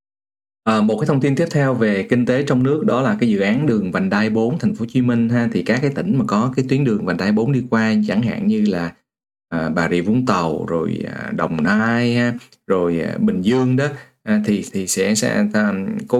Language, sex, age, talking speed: Vietnamese, male, 20-39, 245 wpm